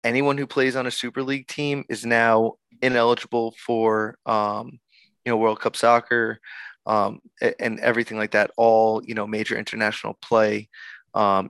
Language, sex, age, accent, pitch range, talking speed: English, male, 20-39, American, 110-125 Hz, 155 wpm